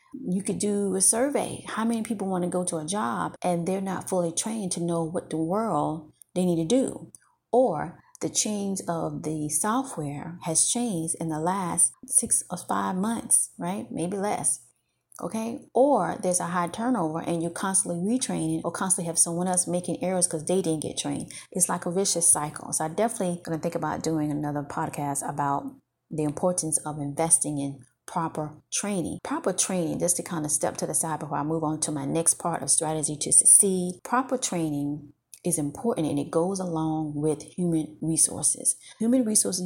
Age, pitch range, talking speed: 30-49, 155-195 Hz, 190 wpm